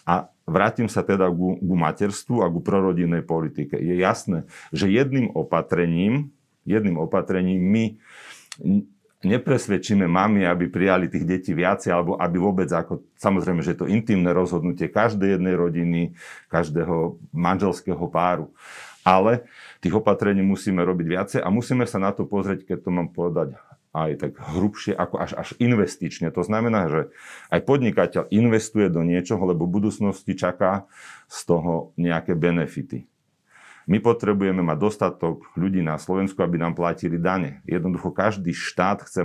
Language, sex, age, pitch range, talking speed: Slovak, male, 40-59, 85-105 Hz, 145 wpm